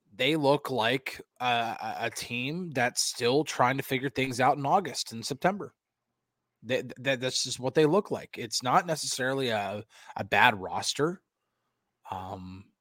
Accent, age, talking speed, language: American, 20-39, 150 wpm, English